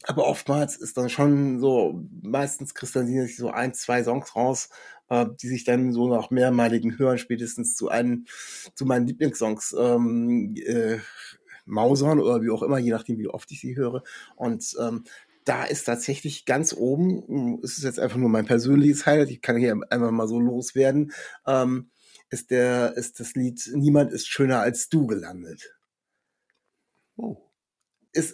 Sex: male